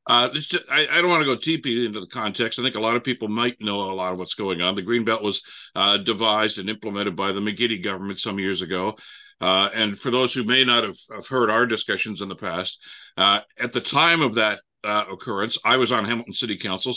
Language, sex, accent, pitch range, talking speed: English, male, American, 105-130 Hz, 250 wpm